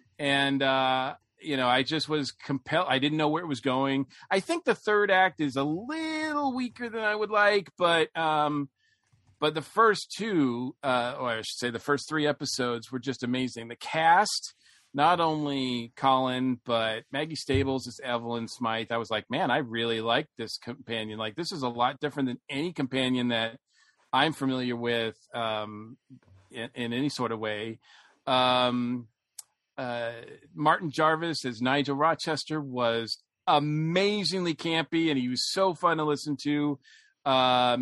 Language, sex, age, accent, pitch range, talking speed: English, male, 40-59, American, 120-150 Hz, 165 wpm